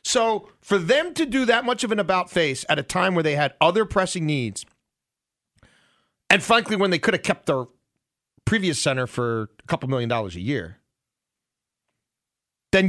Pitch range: 135-185 Hz